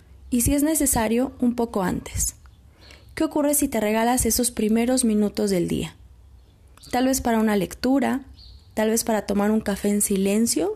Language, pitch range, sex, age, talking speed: Spanish, 190-260 Hz, female, 20-39, 165 wpm